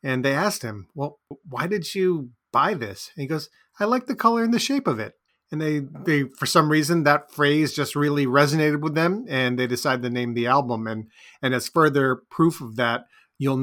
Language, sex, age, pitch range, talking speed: English, male, 30-49, 125-150 Hz, 220 wpm